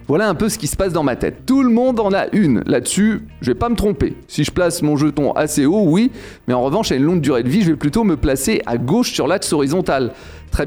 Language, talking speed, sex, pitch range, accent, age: French, 280 wpm, male, 145-210 Hz, French, 30-49